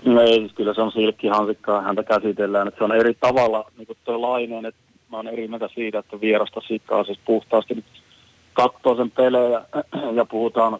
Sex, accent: male, native